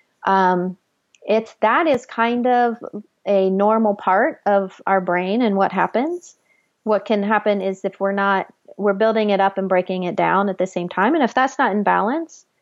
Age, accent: 30-49, American